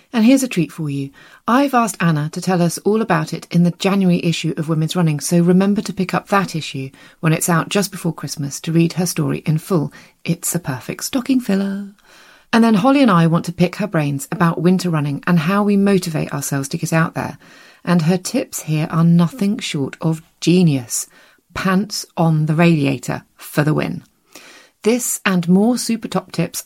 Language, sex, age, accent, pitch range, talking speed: English, female, 30-49, British, 160-200 Hz, 205 wpm